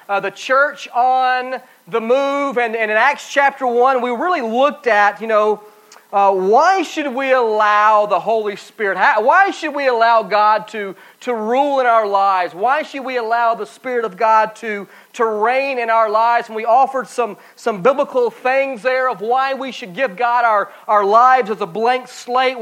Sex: male